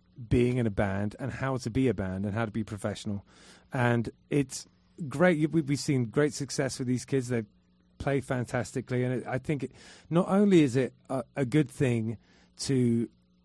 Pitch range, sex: 110-135 Hz, male